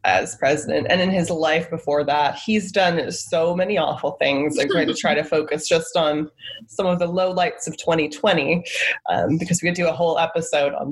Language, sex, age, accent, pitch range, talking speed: English, female, 20-39, American, 155-210 Hz, 210 wpm